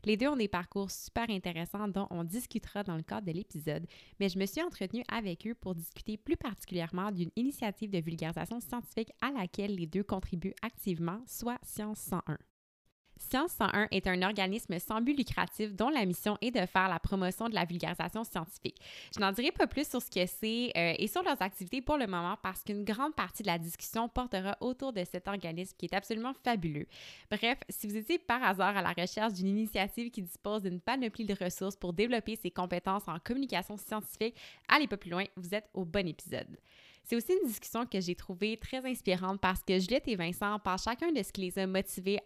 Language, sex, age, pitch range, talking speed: French, female, 20-39, 180-230 Hz, 210 wpm